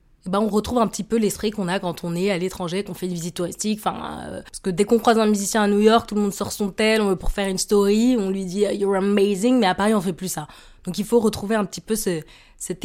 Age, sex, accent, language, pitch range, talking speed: 20-39, female, French, French, 175-210 Hz, 315 wpm